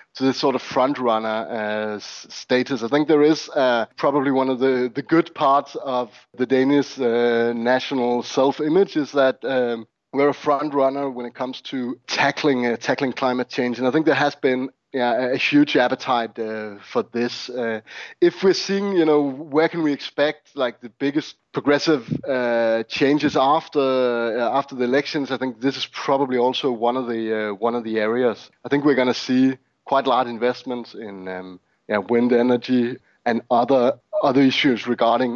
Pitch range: 120-140 Hz